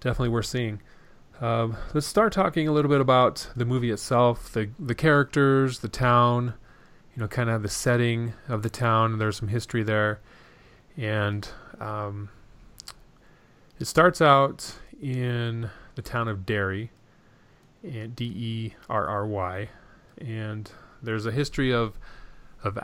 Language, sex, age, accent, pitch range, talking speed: English, male, 30-49, American, 105-120 Hz, 130 wpm